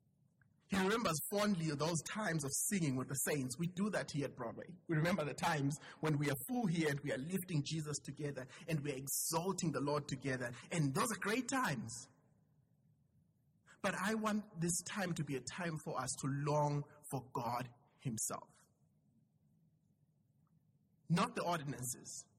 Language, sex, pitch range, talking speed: English, male, 140-180 Hz, 165 wpm